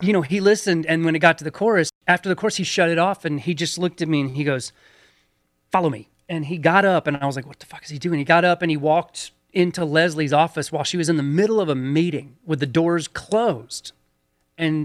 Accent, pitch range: American, 145-180 Hz